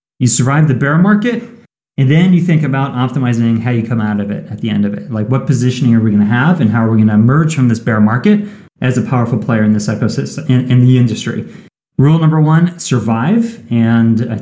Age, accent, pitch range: 30-49, American, 115-155 Hz